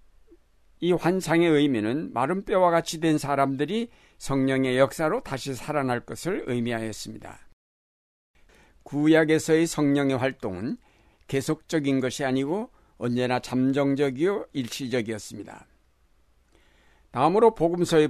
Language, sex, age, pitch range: Korean, male, 60-79, 120-155 Hz